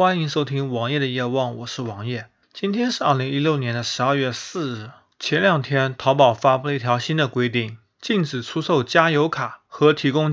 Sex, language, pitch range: male, Chinese, 130-165 Hz